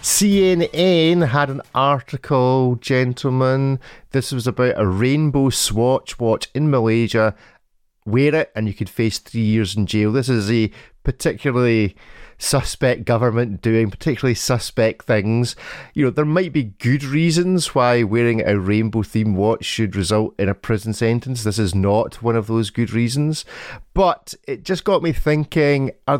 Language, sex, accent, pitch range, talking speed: English, male, British, 100-130 Hz, 155 wpm